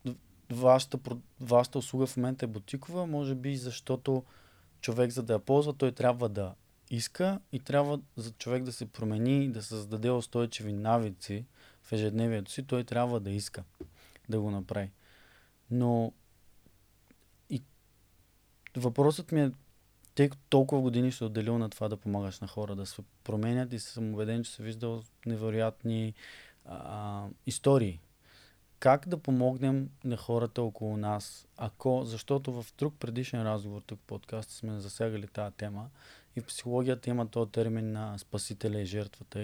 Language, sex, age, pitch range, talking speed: Bulgarian, male, 20-39, 105-125 Hz, 150 wpm